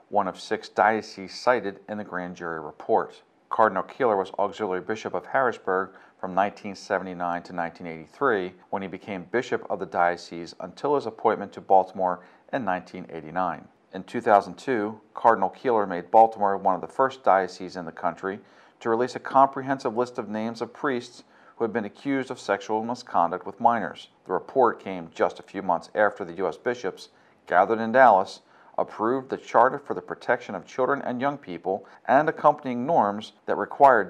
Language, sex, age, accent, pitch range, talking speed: English, male, 50-69, American, 90-115 Hz, 170 wpm